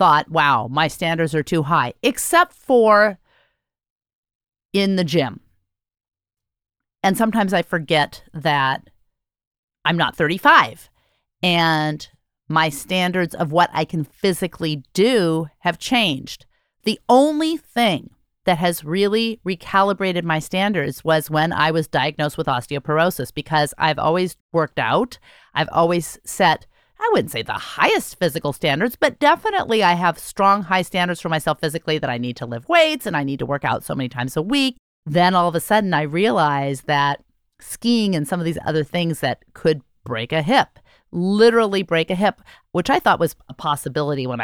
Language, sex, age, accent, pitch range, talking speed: English, female, 40-59, American, 150-195 Hz, 160 wpm